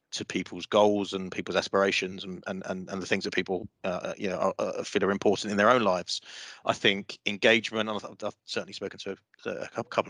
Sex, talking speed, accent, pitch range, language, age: male, 230 wpm, British, 95-105 Hz, English, 30-49